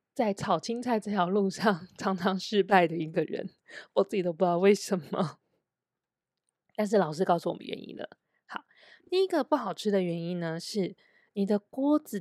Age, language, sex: 20-39, Chinese, female